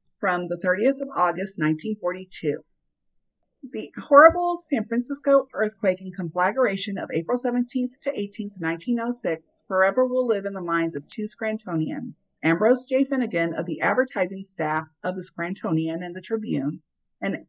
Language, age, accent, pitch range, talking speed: English, 40-59, American, 175-235 Hz, 145 wpm